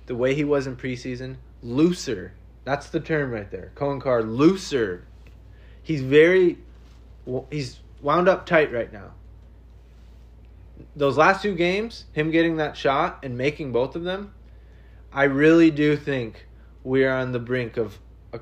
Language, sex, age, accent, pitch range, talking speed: English, male, 20-39, American, 125-195 Hz, 155 wpm